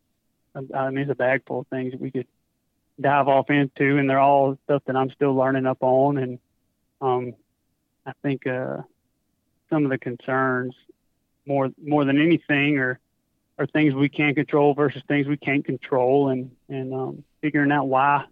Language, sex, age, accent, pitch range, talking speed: English, male, 30-49, American, 135-150 Hz, 175 wpm